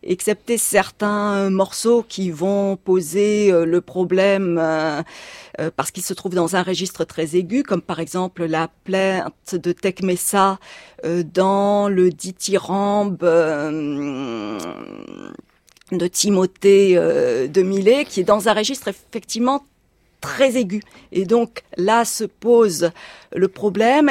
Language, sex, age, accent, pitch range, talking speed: French, female, 40-59, French, 185-230 Hz, 120 wpm